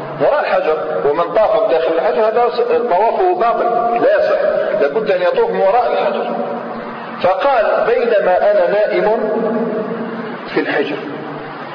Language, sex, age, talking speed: Arabic, male, 40-59, 110 wpm